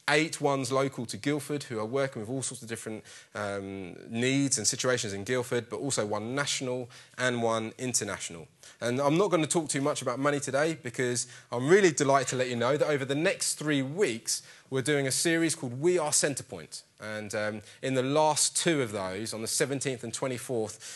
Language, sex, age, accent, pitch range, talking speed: English, male, 20-39, British, 110-140 Hz, 205 wpm